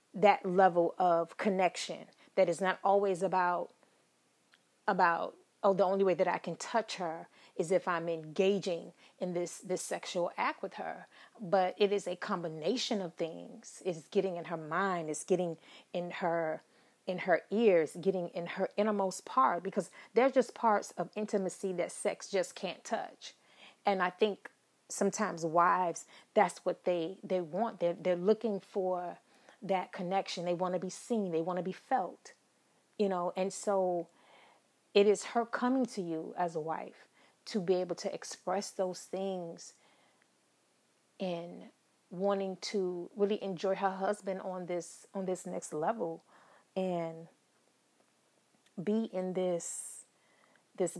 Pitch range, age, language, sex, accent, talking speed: 175-200 Hz, 30-49, English, female, American, 150 wpm